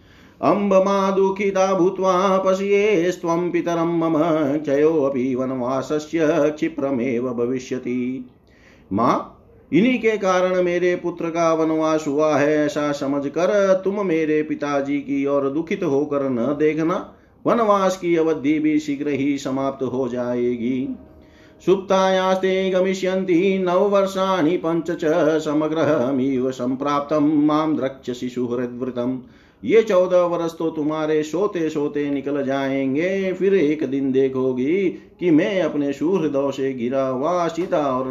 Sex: male